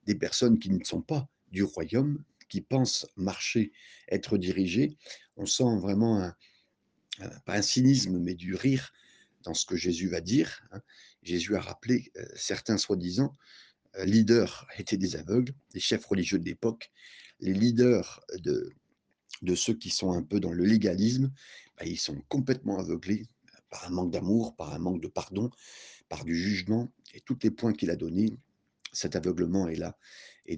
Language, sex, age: French, male, 50-69